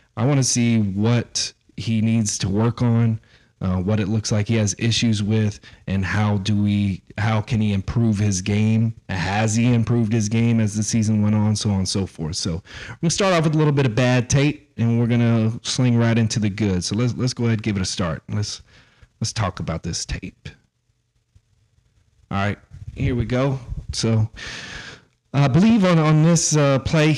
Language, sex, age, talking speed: English, male, 30-49, 210 wpm